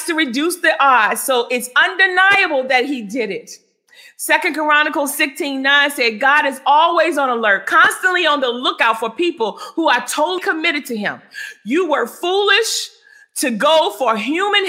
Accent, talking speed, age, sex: American, 165 wpm, 40-59, female